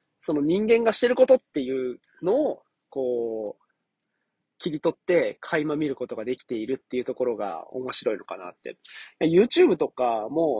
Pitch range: 130-175 Hz